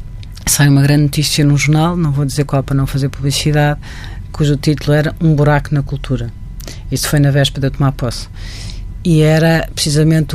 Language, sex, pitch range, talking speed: Portuguese, female, 130-155 Hz, 180 wpm